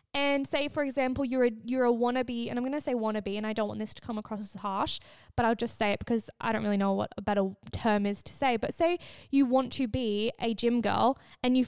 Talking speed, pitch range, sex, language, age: 265 wpm, 230-320 Hz, female, English, 20-39